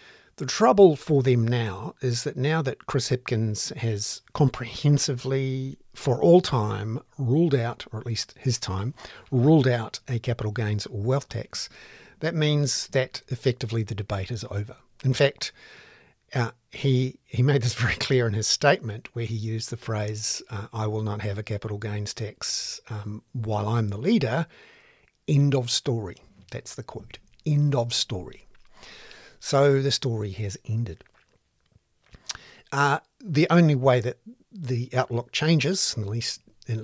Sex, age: male, 50-69